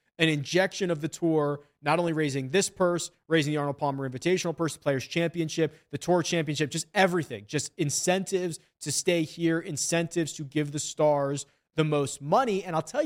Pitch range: 145-190 Hz